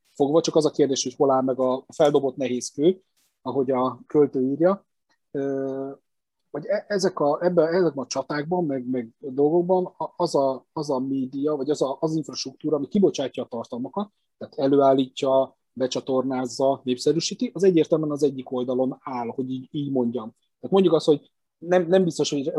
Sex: male